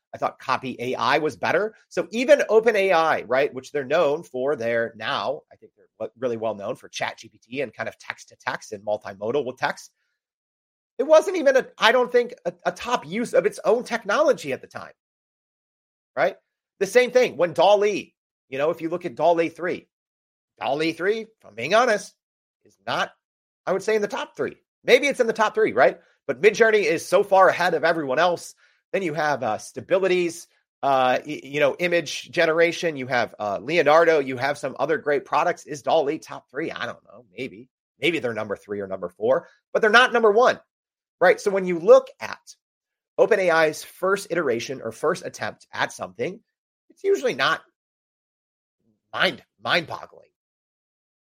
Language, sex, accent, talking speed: English, male, American, 185 wpm